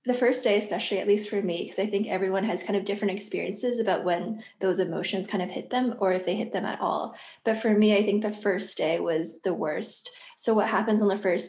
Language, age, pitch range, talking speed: English, 10-29, 190-220 Hz, 255 wpm